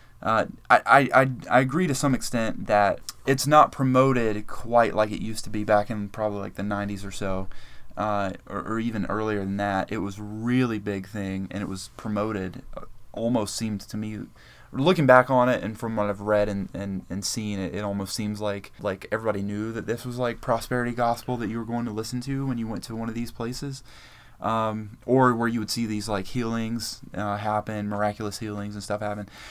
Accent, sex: American, male